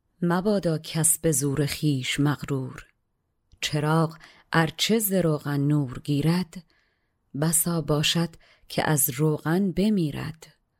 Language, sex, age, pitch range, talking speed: Persian, female, 30-49, 145-170 Hz, 90 wpm